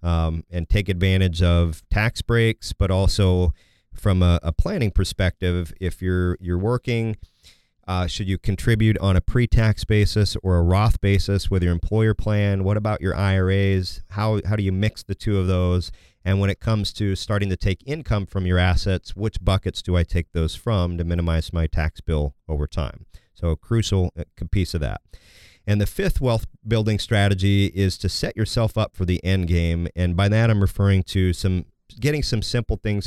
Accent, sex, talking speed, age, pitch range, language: American, male, 190 wpm, 40-59, 90-105 Hz, English